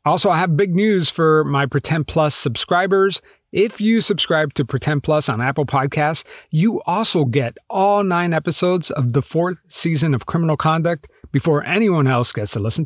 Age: 30-49